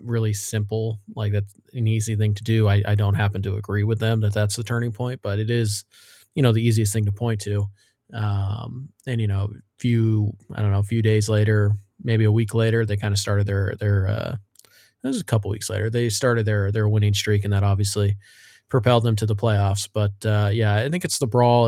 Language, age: English, 20-39